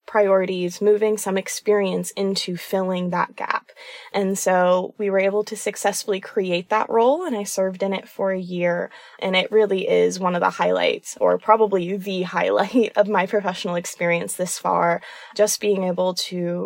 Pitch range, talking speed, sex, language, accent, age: 185-215 Hz, 175 wpm, female, English, American, 20-39